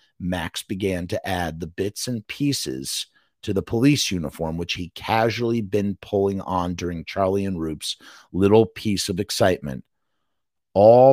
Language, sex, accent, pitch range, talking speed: English, male, American, 95-130 Hz, 145 wpm